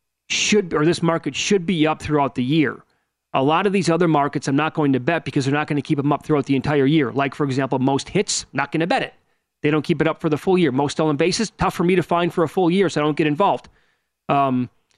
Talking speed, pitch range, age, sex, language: 280 wpm, 140-175 Hz, 40-59, male, English